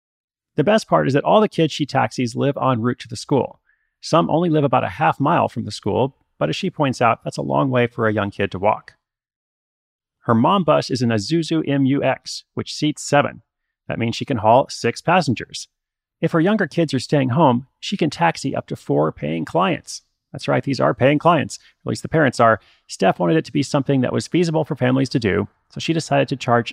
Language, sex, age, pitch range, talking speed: English, male, 30-49, 115-150 Hz, 230 wpm